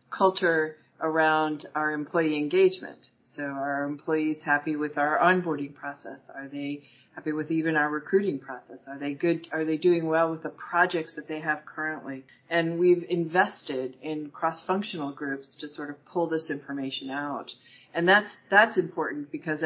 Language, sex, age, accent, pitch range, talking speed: English, female, 40-59, American, 145-175 Hz, 160 wpm